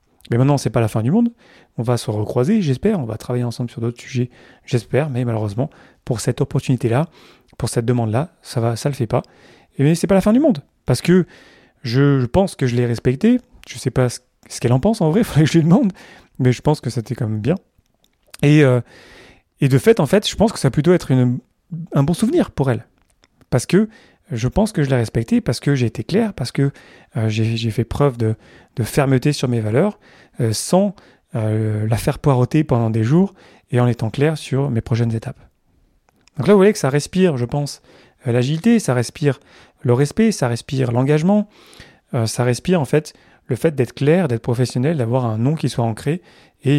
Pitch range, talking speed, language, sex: 120-155 Hz, 220 wpm, French, male